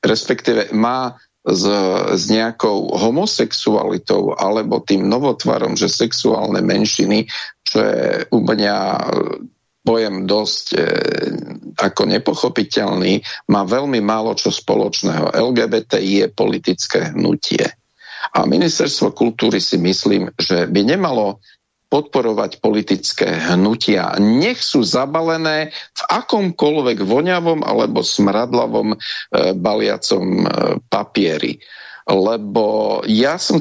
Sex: male